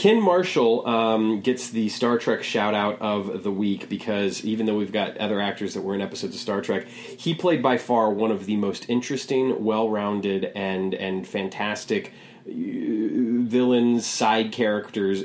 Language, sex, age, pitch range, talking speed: English, male, 30-49, 95-115 Hz, 160 wpm